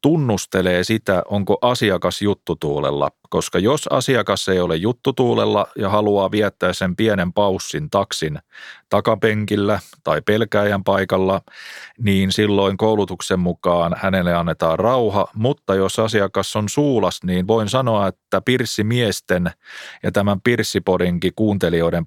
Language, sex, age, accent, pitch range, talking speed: Finnish, male, 30-49, native, 95-120 Hz, 115 wpm